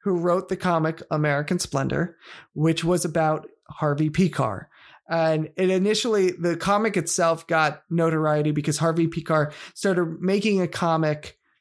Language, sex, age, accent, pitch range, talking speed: English, male, 30-49, American, 150-180 Hz, 135 wpm